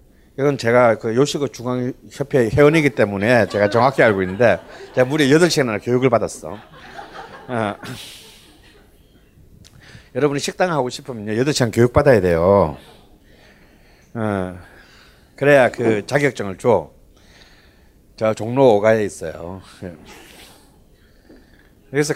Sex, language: male, Korean